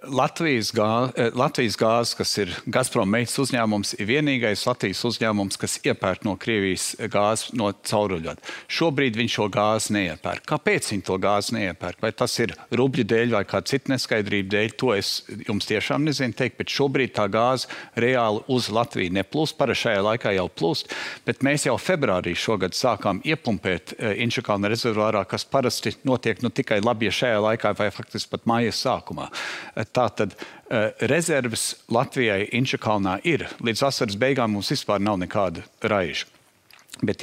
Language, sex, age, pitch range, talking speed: English, male, 50-69, 105-130 Hz, 150 wpm